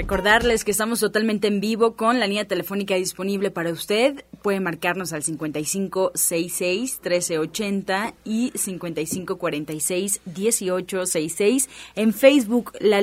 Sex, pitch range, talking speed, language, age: female, 185-230 Hz, 100 wpm, Spanish, 20-39